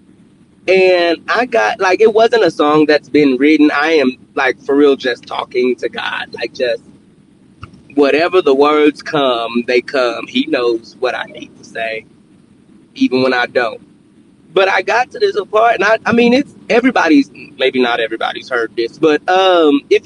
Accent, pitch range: American, 140-235 Hz